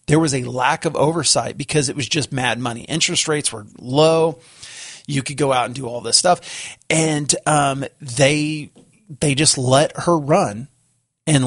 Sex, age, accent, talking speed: male, 40-59, American, 180 wpm